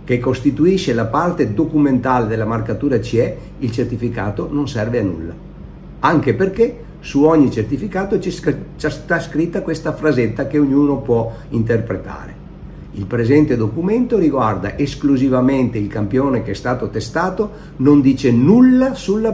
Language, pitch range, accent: Italian, 110-165 Hz, native